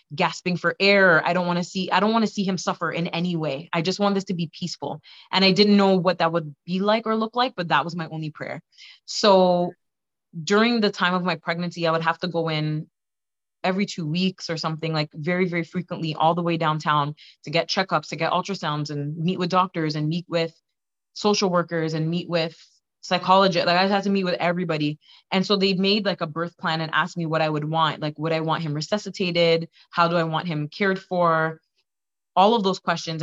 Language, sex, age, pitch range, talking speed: English, female, 20-39, 160-190 Hz, 230 wpm